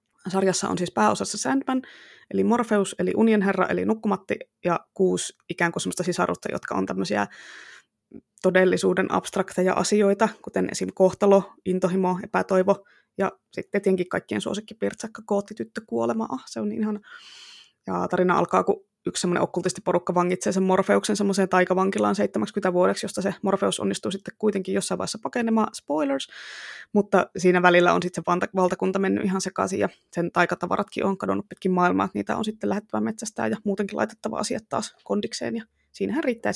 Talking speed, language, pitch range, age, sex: 155 wpm, Finnish, 175-210 Hz, 20-39, female